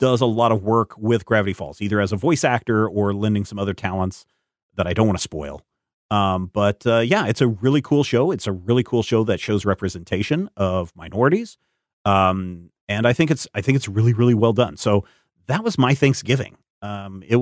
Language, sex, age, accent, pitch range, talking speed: English, male, 40-59, American, 100-135 Hz, 215 wpm